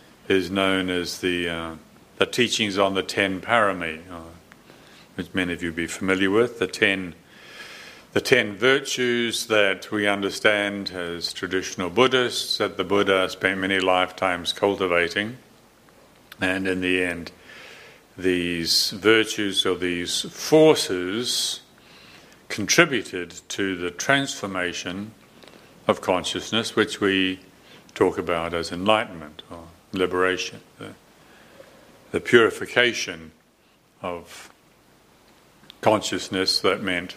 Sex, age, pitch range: male, 50-69, 85-100 Hz